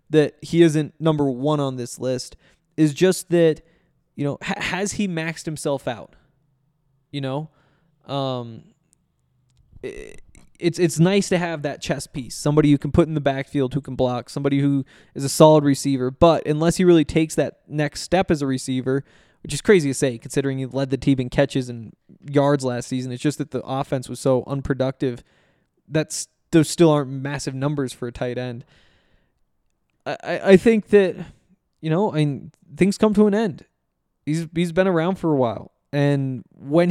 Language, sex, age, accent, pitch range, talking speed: English, male, 20-39, American, 135-165 Hz, 185 wpm